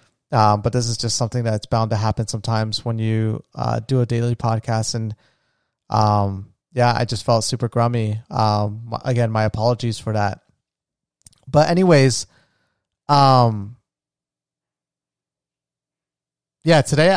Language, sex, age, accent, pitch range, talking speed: English, male, 30-49, American, 115-140 Hz, 130 wpm